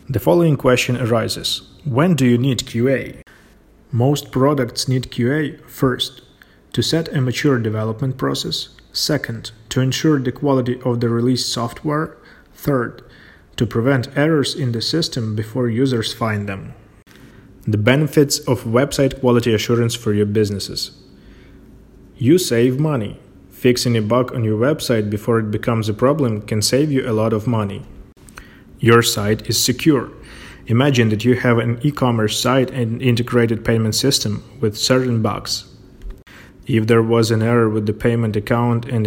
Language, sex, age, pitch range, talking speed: English, male, 30-49, 110-130 Hz, 150 wpm